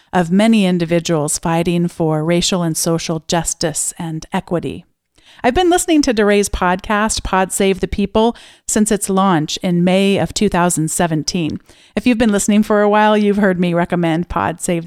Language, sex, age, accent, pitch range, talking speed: English, female, 40-59, American, 170-210 Hz, 165 wpm